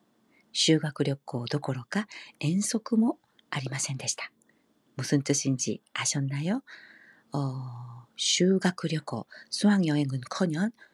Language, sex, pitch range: Korean, female, 140-190 Hz